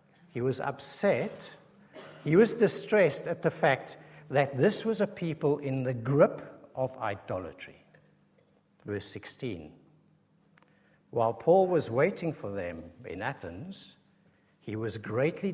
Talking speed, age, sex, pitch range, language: 125 wpm, 60-79, male, 115-155 Hz, English